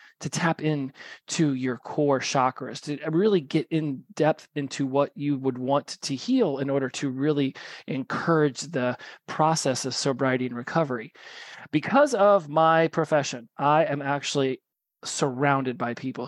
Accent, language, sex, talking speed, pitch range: American, English, male, 145 wpm, 135-170 Hz